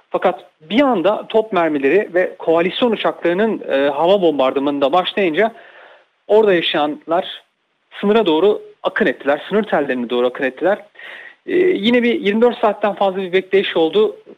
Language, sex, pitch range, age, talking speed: Turkish, male, 180-245 Hz, 40-59, 135 wpm